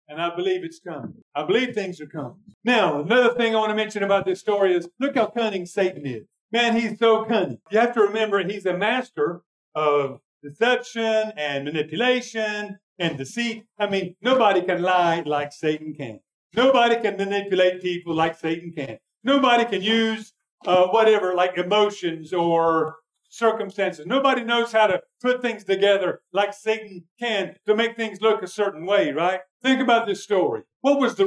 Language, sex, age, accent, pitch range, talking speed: English, male, 50-69, American, 185-245 Hz, 175 wpm